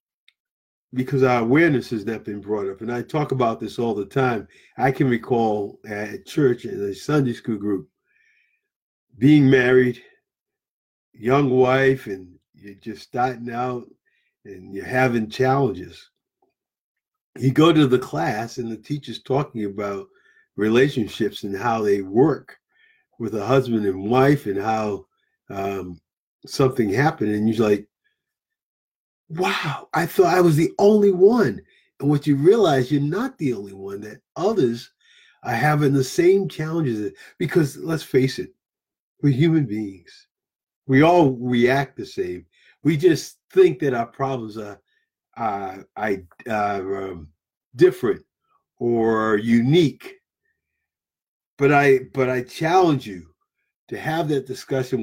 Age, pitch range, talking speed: 50-69, 110-150 Hz, 135 wpm